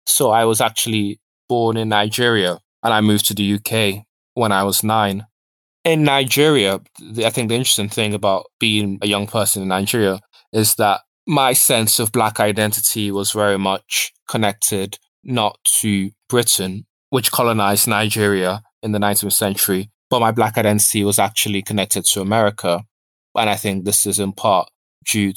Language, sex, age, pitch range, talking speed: English, male, 20-39, 100-115 Hz, 165 wpm